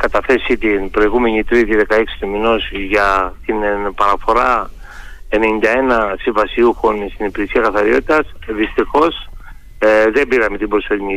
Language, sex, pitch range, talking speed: Greek, male, 105-135 Hz, 115 wpm